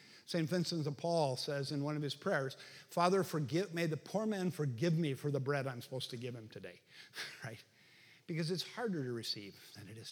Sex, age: male, 50-69